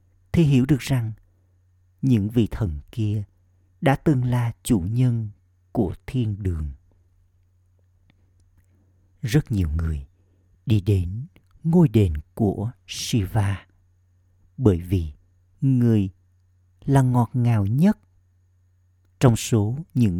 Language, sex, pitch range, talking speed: Vietnamese, male, 90-115 Hz, 105 wpm